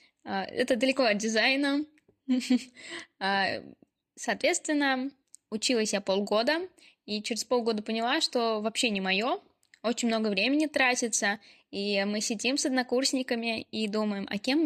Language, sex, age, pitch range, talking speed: Russian, female, 10-29, 215-280 Hz, 120 wpm